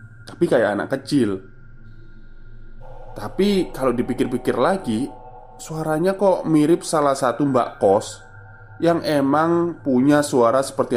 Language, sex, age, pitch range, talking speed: Indonesian, male, 20-39, 110-135 Hz, 110 wpm